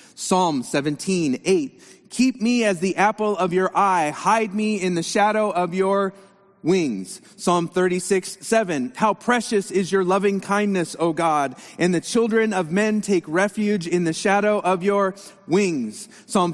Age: 30-49